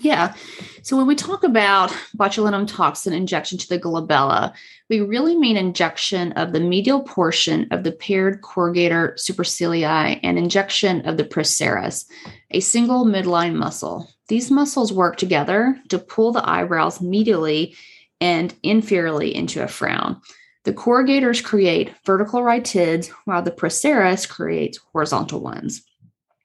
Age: 30-49